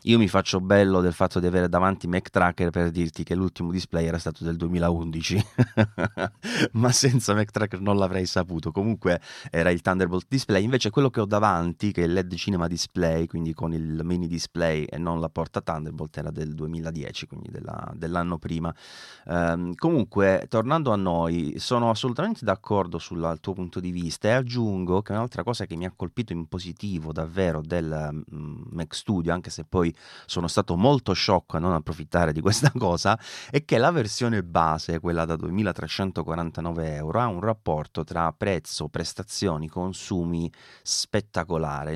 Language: Italian